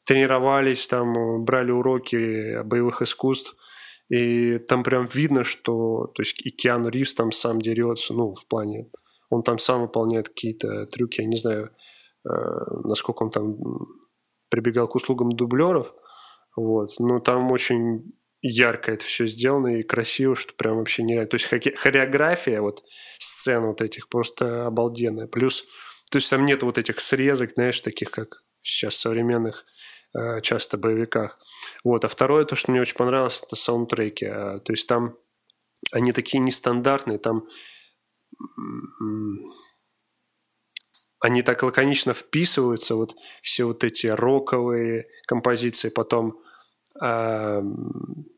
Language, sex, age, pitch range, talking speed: Russian, male, 20-39, 115-130 Hz, 130 wpm